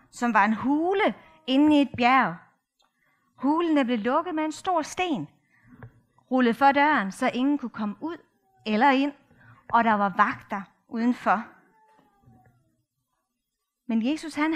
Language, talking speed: Danish, 135 wpm